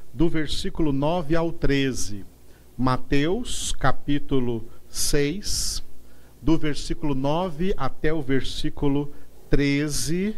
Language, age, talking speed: Portuguese, 50-69, 85 wpm